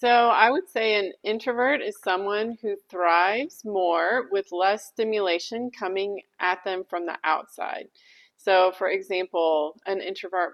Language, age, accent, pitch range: English, 30-49, American, 185-245 Hz